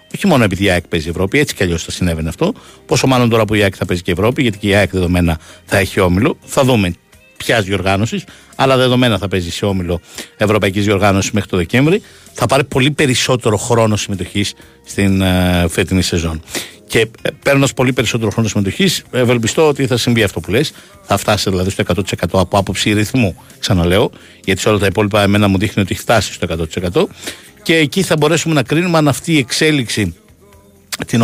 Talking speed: 200 wpm